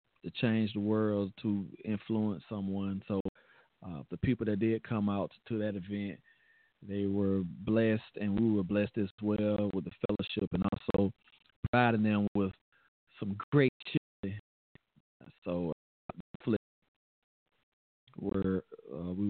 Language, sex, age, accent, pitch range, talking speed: English, male, 40-59, American, 100-115 Hz, 135 wpm